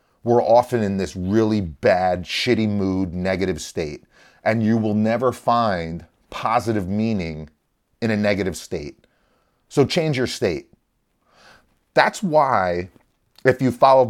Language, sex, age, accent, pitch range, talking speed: English, male, 30-49, American, 95-115 Hz, 130 wpm